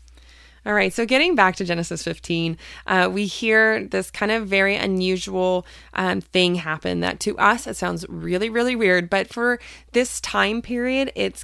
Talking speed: 175 wpm